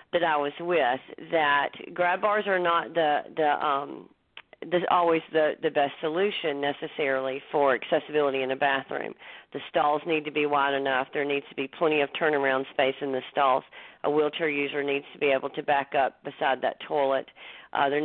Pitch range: 140-170 Hz